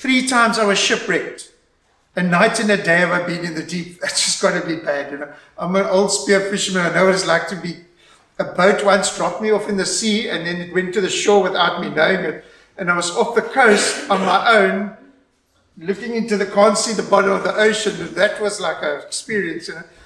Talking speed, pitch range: 245 wpm, 185-220 Hz